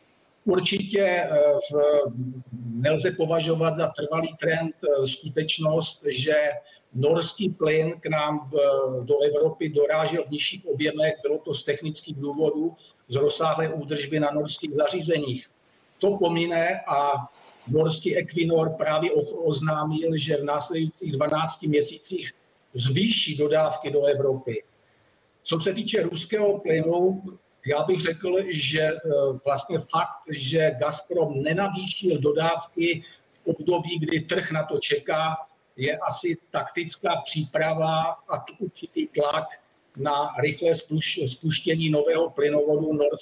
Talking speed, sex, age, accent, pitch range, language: 120 wpm, male, 50-69, native, 150-175 Hz, Czech